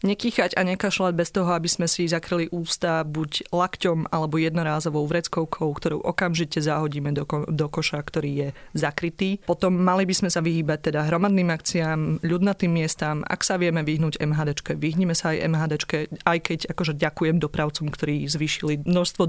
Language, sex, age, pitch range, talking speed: Slovak, female, 30-49, 155-180 Hz, 165 wpm